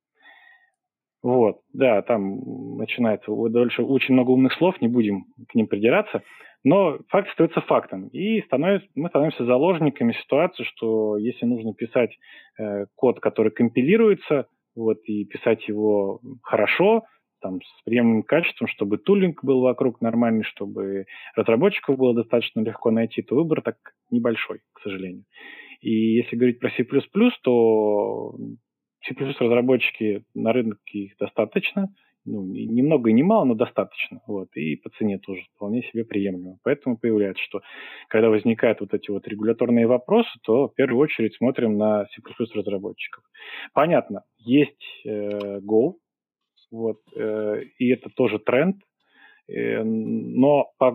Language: Russian